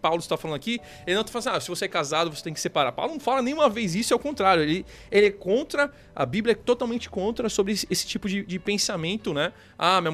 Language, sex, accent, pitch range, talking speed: Portuguese, male, Brazilian, 160-215 Hz, 270 wpm